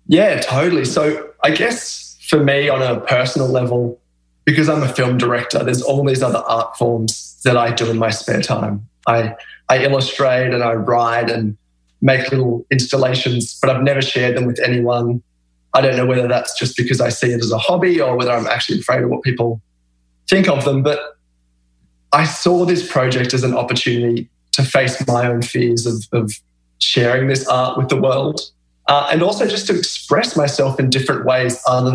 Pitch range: 110-130 Hz